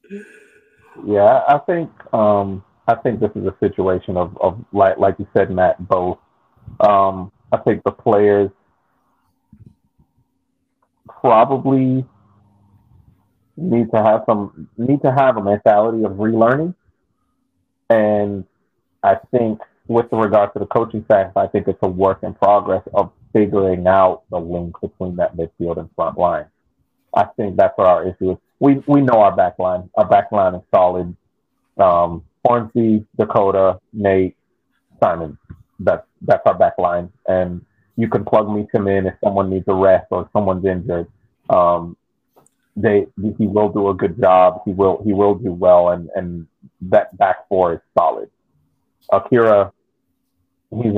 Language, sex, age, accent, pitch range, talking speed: English, male, 40-59, American, 95-115 Hz, 150 wpm